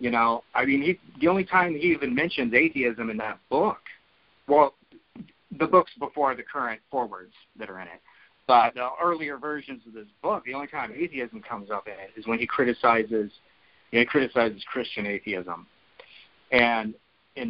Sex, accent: male, American